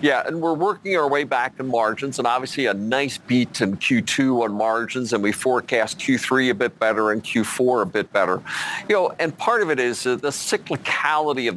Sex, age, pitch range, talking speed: male, 50-69, 115-140 Hz, 205 wpm